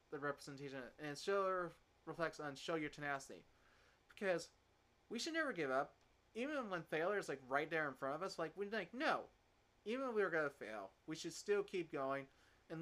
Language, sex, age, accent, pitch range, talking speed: English, male, 30-49, American, 145-180 Hz, 195 wpm